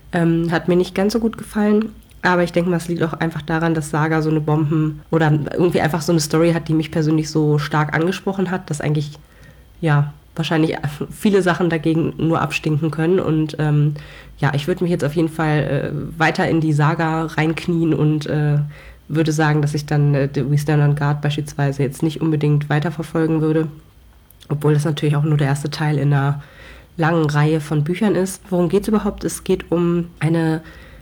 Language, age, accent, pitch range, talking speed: German, 30-49, German, 155-175 Hz, 195 wpm